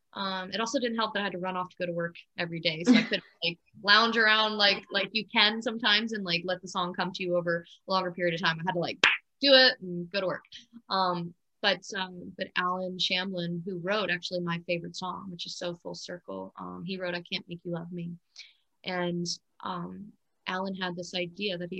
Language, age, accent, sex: English, 20-39, American, female